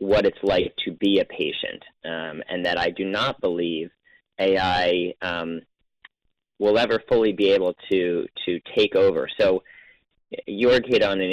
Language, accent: English, American